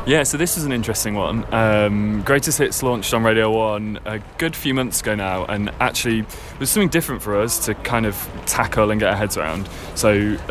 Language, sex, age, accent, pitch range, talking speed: English, male, 20-39, British, 100-120 Hz, 225 wpm